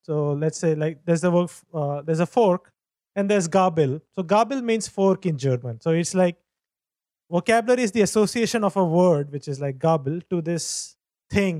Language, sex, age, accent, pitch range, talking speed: English, male, 30-49, Indian, 160-200 Hz, 175 wpm